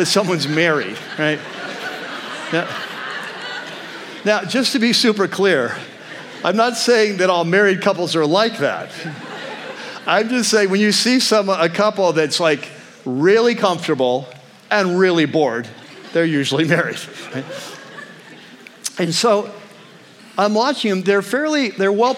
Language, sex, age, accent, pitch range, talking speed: English, male, 50-69, American, 165-210 Hz, 135 wpm